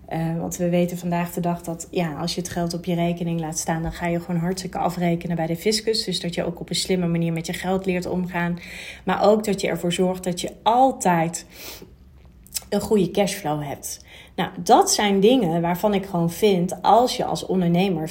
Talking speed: 215 wpm